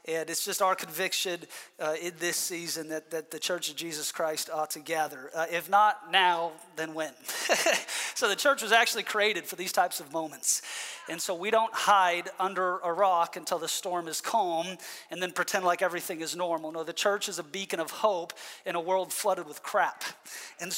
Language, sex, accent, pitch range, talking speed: English, male, American, 170-210 Hz, 205 wpm